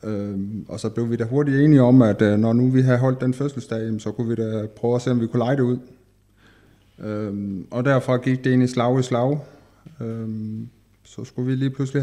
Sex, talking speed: male, 215 wpm